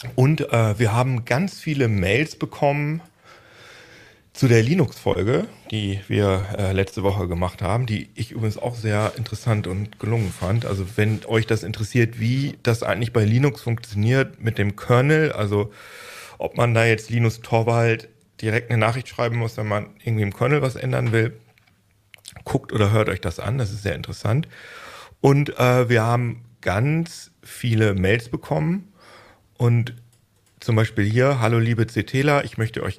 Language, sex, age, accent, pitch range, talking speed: German, male, 40-59, German, 100-120 Hz, 160 wpm